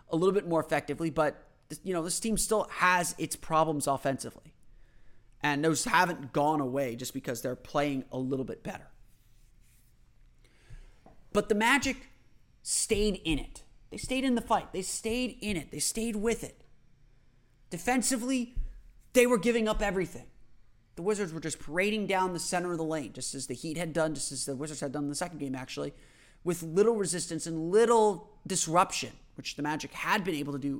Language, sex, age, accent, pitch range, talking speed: English, male, 30-49, American, 140-190 Hz, 185 wpm